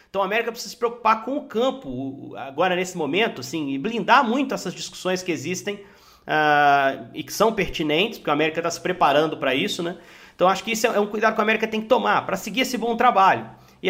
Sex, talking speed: male, 230 wpm